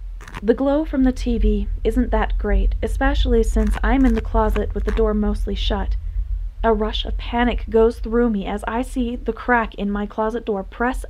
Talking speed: 195 wpm